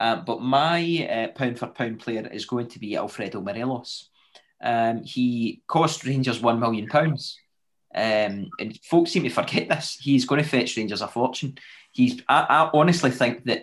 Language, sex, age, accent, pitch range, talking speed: English, male, 20-39, British, 115-140 Hz, 170 wpm